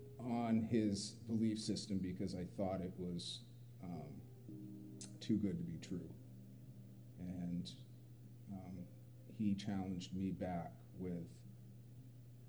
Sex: male